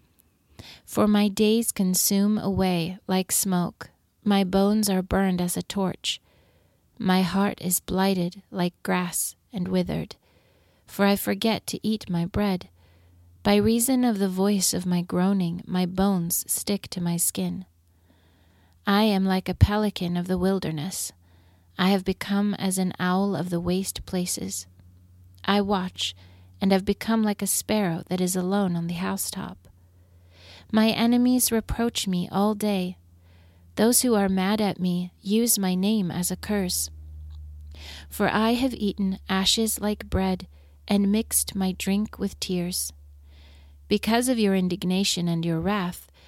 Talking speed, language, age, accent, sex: 145 wpm, English, 30-49, American, female